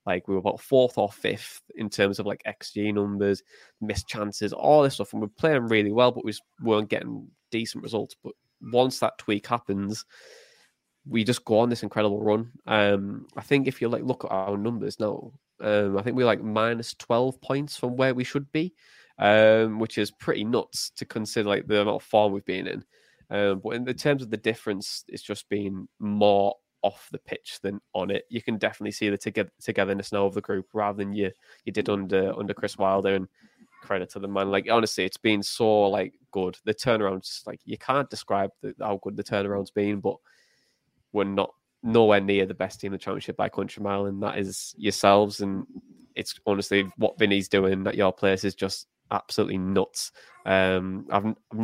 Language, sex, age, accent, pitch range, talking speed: English, male, 20-39, British, 100-110 Hz, 205 wpm